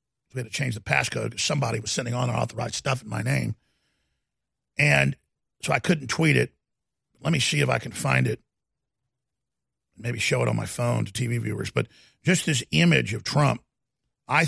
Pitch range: 115-165 Hz